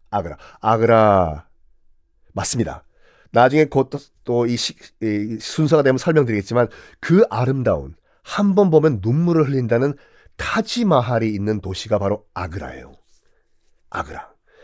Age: 40-59